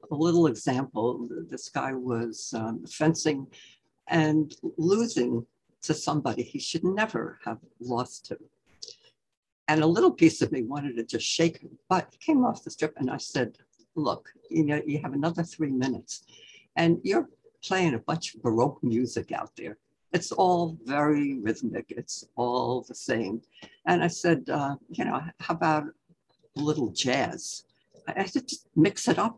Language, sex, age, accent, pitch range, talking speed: English, female, 60-79, American, 125-185 Hz, 165 wpm